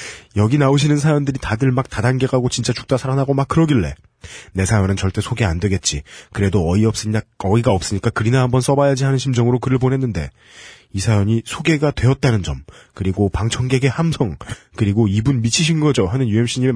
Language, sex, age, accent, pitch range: Korean, male, 30-49, native, 105-140 Hz